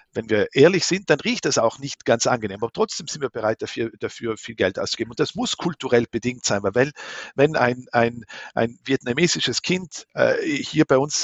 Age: 50-69